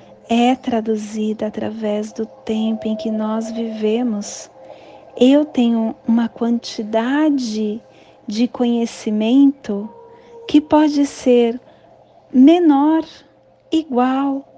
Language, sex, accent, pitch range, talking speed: Portuguese, female, Brazilian, 230-300 Hz, 80 wpm